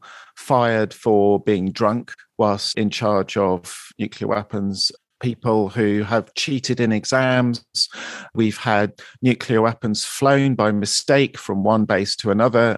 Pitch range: 110-135 Hz